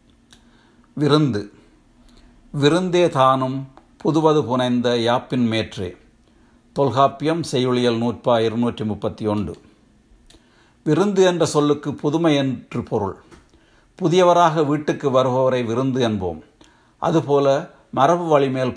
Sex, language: male, Tamil